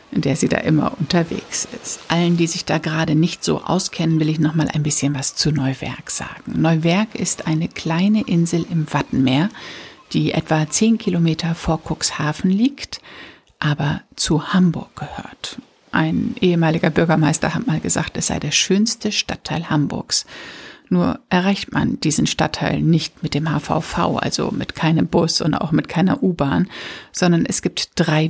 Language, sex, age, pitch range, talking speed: German, female, 60-79, 155-190 Hz, 165 wpm